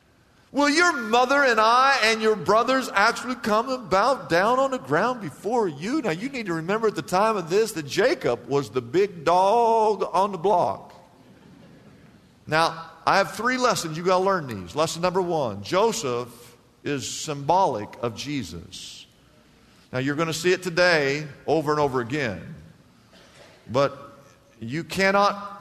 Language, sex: English, male